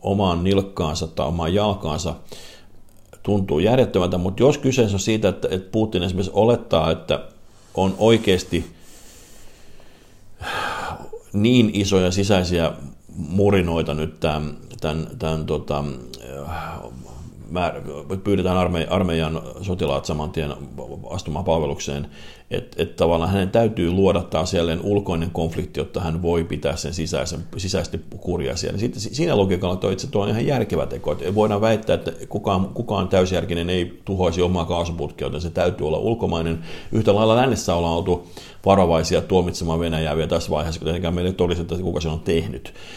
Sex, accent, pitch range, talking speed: male, native, 80-95 Hz, 135 wpm